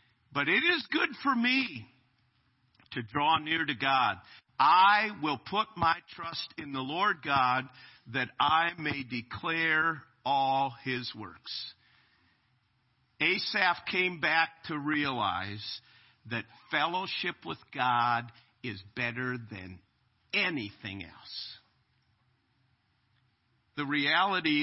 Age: 50-69